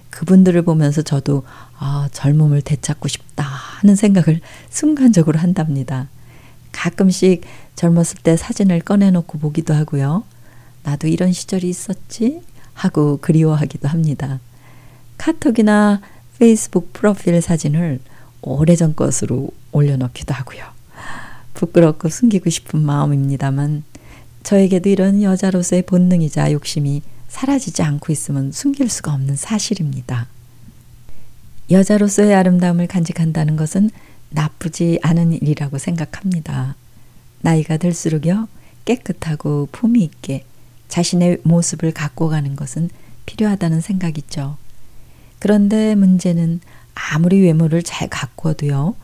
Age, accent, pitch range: 40-59, native, 140-180 Hz